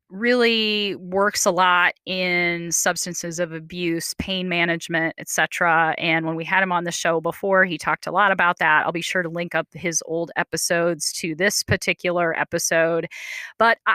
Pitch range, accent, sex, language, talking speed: 165-210 Hz, American, female, English, 170 wpm